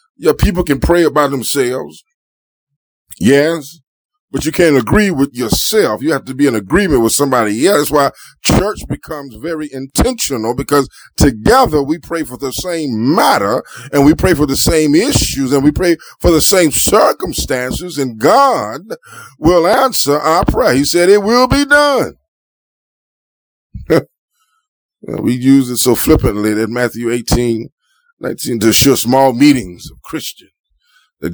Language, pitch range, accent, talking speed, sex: English, 130-175 Hz, American, 150 wpm, male